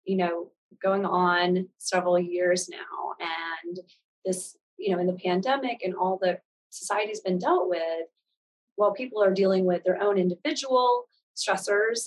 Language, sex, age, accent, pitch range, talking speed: English, female, 30-49, American, 180-205 Hz, 155 wpm